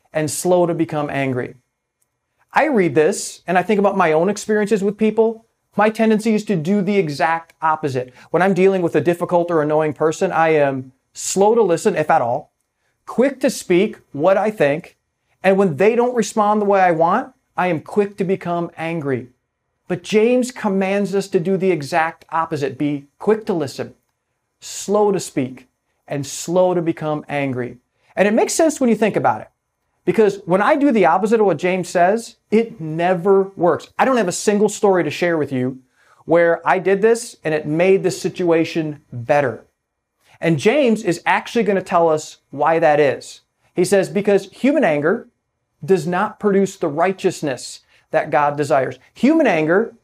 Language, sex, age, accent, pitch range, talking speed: English, male, 40-59, American, 150-205 Hz, 180 wpm